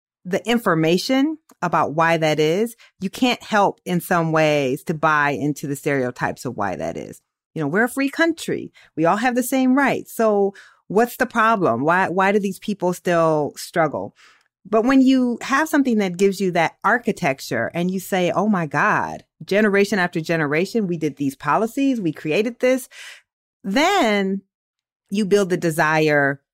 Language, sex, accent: English, female, American